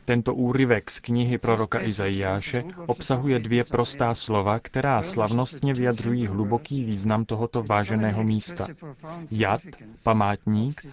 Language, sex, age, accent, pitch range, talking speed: Czech, male, 30-49, native, 110-130 Hz, 110 wpm